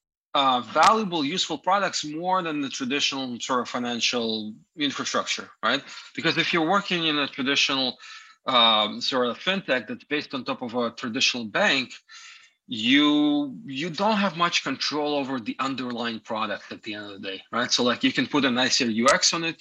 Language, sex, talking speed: English, male, 180 wpm